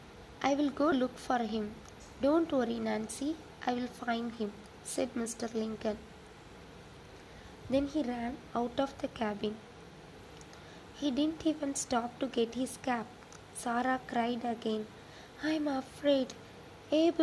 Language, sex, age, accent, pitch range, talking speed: English, female, 20-39, Indian, 230-280 Hz, 130 wpm